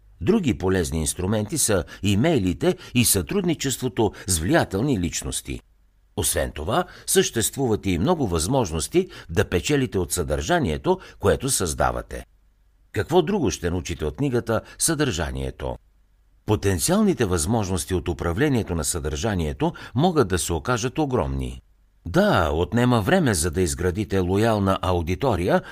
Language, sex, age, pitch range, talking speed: Bulgarian, male, 60-79, 85-125 Hz, 110 wpm